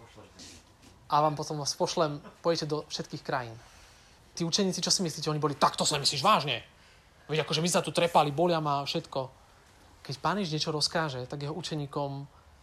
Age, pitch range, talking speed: 30-49, 100-165 Hz, 170 wpm